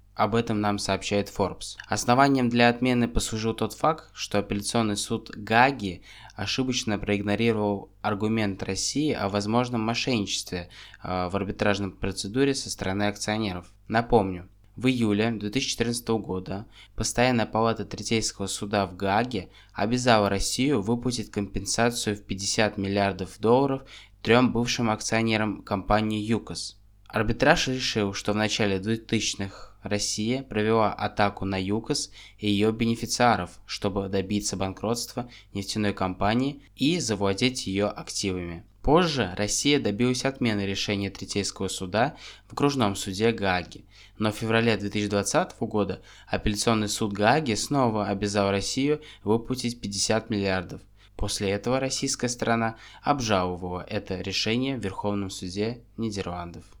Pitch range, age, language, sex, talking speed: 100-115 Hz, 20-39, Russian, male, 115 wpm